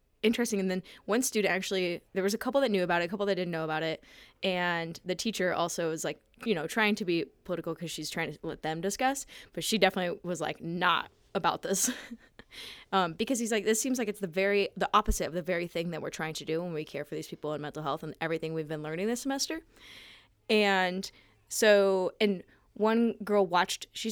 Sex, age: female, 20-39